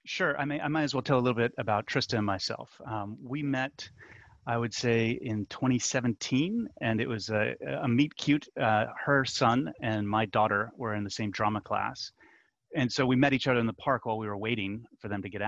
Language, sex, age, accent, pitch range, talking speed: English, male, 30-49, American, 105-130 Hz, 225 wpm